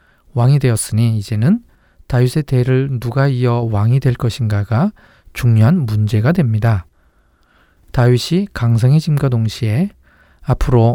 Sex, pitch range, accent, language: male, 110-135 Hz, native, Korean